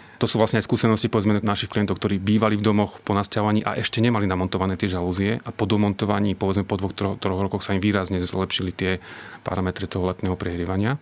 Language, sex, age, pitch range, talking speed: Slovak, male, 30-49, 95-110 Hz, 205 wpm